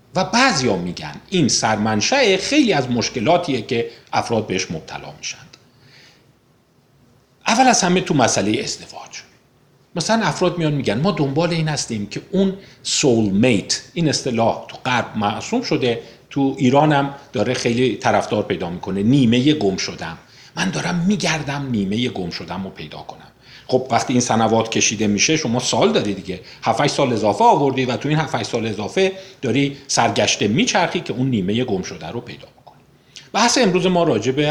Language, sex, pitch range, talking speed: Persian, male, 120-175 Hz, 160 wpm